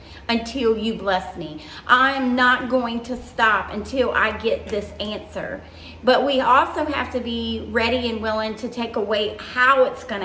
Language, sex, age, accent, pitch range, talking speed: English, female, 40-59, American, 215-265 Hz, 170 wpm